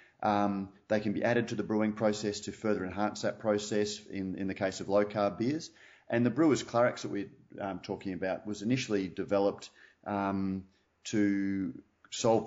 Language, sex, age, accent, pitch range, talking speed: English, male, 30-49, Australian, 95-105 Hz, 175 wpm